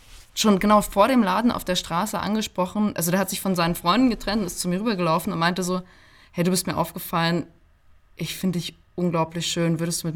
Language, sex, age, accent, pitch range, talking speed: German, female, 20-39, German, 160-190 Hz, 225 wpm